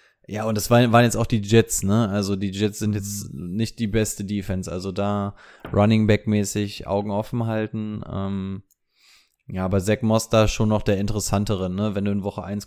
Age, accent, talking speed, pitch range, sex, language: 20-39, German, 195 wpm, 105-120 Hz, male, German